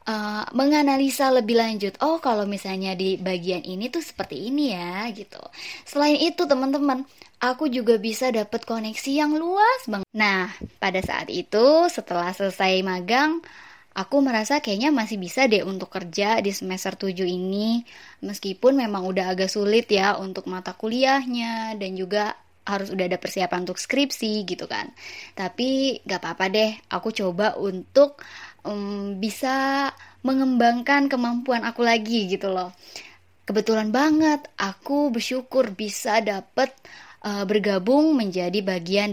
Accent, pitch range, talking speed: native, 195-265 Hz, 135 wpm